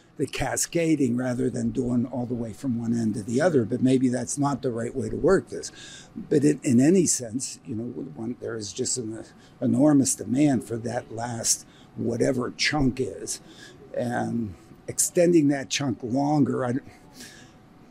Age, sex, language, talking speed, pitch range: 60-79, male, English, 170 wpm, 120-145 Hz